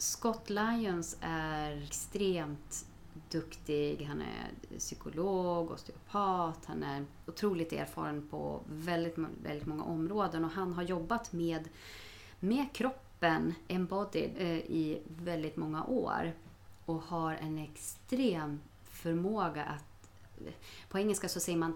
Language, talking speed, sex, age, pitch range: Swedish, 115 wpm, female, 30-49, 155-195 Hz